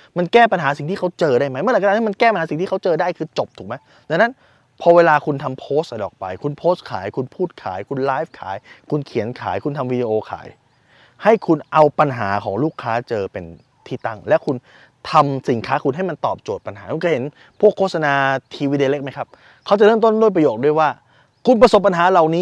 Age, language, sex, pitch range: 20-39, Thai, male, 135-195 Hz